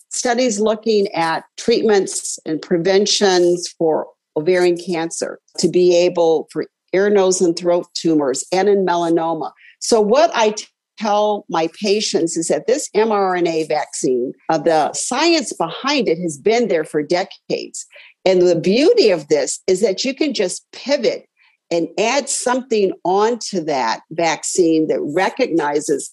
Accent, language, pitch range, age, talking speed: American, English, 165-240 Hz, 50-69, 140 wpm